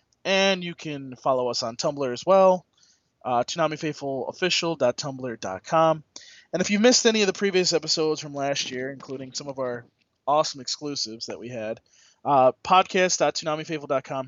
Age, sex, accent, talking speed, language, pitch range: 20-39, male, American, 145 wpm, English, 120-160 Hz